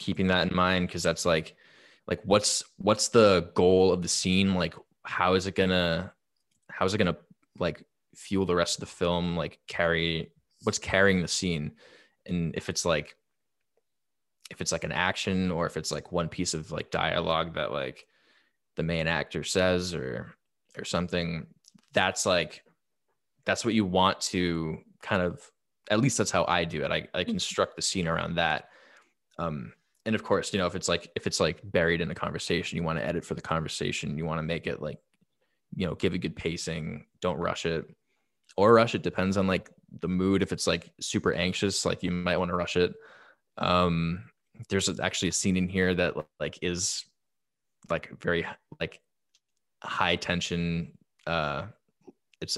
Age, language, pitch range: 20-39, English, 85-95 Hz